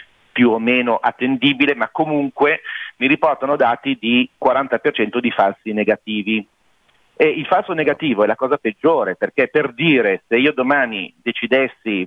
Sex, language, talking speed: male, Italian, 145 wpm